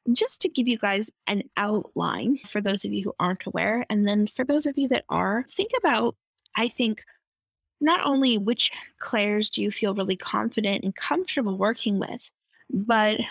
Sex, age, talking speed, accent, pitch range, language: female, 20-39, 180 wpm, American, 205-250 Hz, English